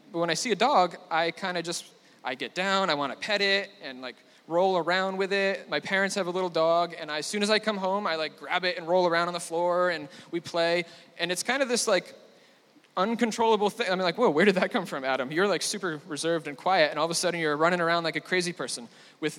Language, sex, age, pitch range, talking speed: English, male, 20-39, 165-210 Hz, 270 wpm